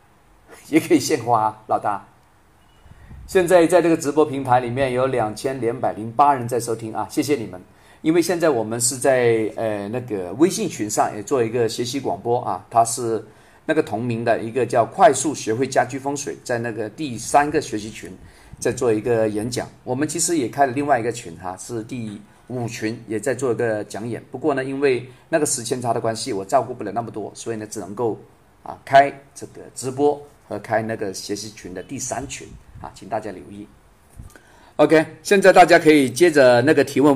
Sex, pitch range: male, 110-140 Hz